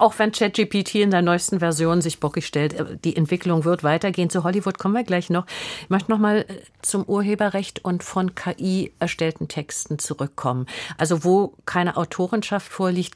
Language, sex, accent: German, female, German